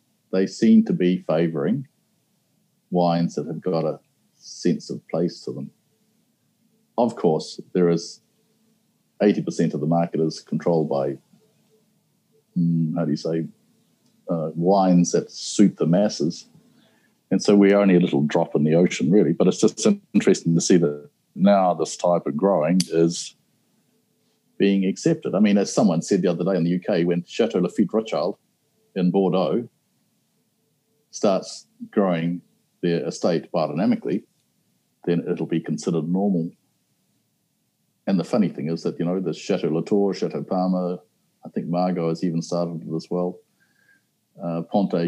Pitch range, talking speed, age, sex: 85-105 Hz, 150 wpm, 50-69, male